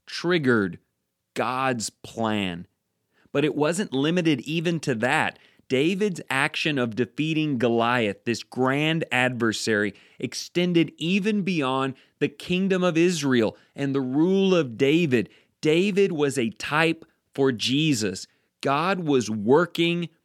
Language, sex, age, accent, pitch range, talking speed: English, male, 30-49, American, 115-160 Hz, 115 wpm